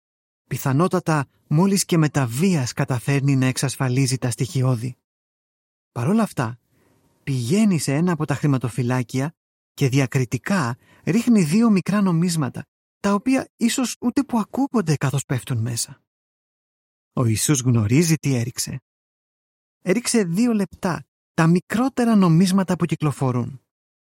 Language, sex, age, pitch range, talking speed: Greek, male, 30-49, 130-185 Hz, 120 wpm